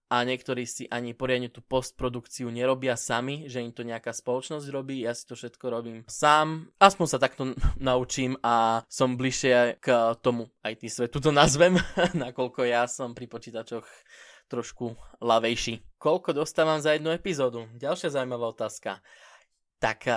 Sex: male